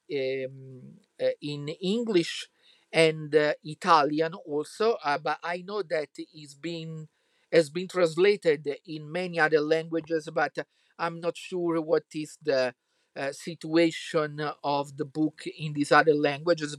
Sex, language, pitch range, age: male, English, 145-175 Hz, 50-69